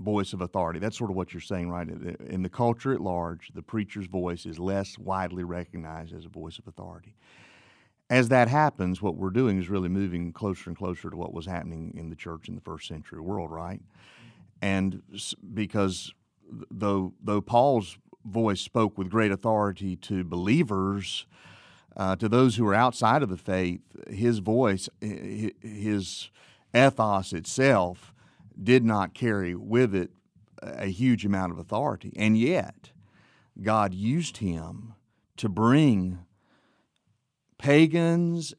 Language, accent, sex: English, American, male